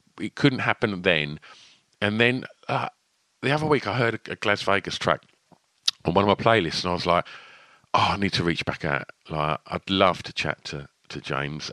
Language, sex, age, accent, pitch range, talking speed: English, male, 50-69, British, 85-110 Hz, 210 wpm